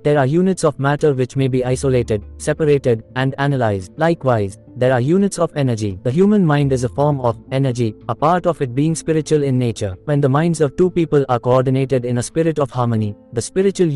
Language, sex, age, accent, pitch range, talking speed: English, male, 20-39, Indian, 120-150 Hz, 210 wpm